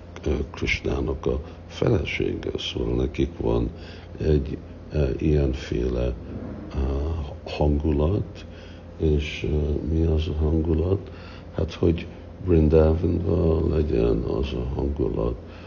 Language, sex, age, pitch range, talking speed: Hungarian, male, 60-79, 75-85 Hz, 90 wpm